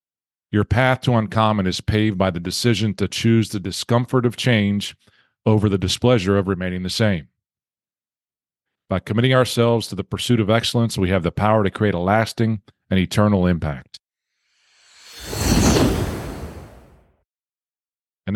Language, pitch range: English, 95-115 Hz